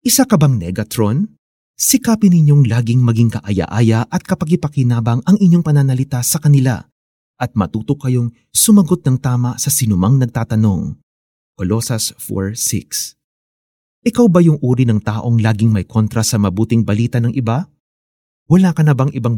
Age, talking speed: 30-49, 145 wpm